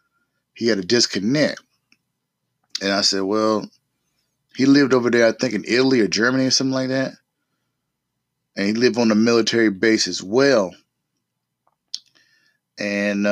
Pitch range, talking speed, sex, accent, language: 100-120 Hz, 145 wpm, male, American, English